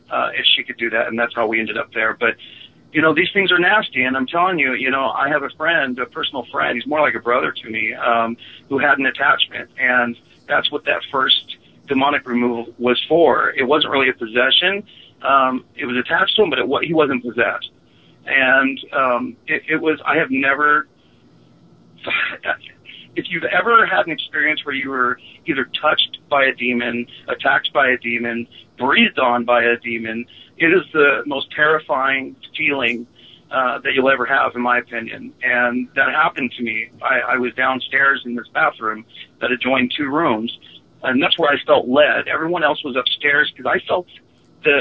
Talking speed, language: 190 wpm, English